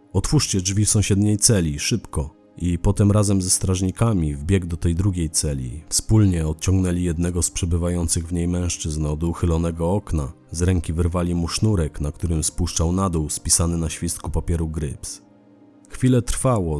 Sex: male